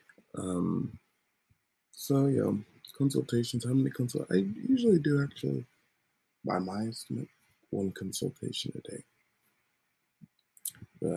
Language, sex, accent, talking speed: English, male, American, 100 wpm